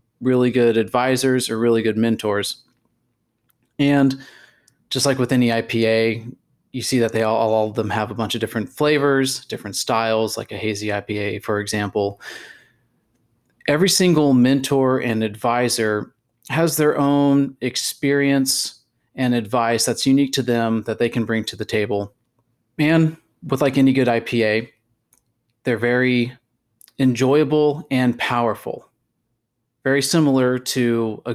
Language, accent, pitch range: English, American, 115-130 Hz